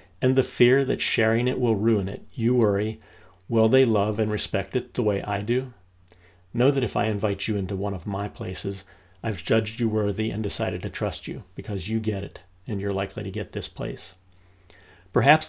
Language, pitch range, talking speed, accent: English, 95-115 Hz, 205 wpm, American